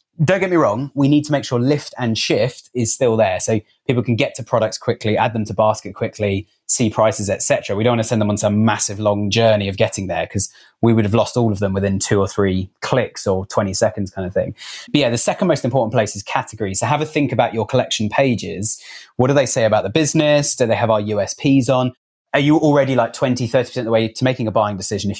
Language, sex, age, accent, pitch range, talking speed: English, male, 30-49, British, 105-125 Hz, 255 wpm